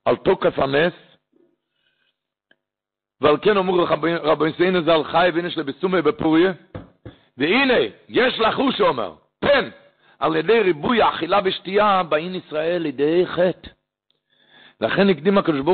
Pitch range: 140-185 Hz